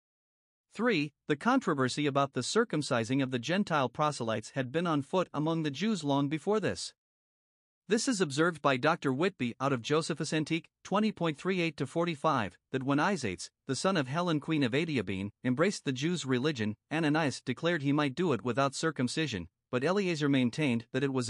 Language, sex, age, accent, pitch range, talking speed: English, male, 50-69, American, 130-170 Hz, 165 wpm